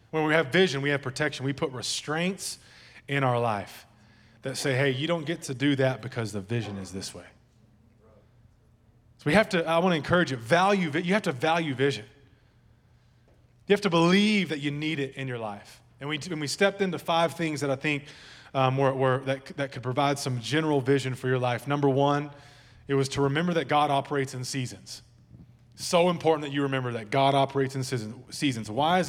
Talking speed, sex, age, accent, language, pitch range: 205 wpm, male, 20-39, American, English, 125-160 Hz